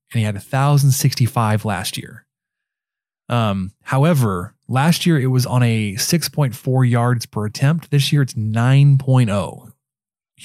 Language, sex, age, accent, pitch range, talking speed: English, male, 20-39, American, 110-140 Hz, 125 wpm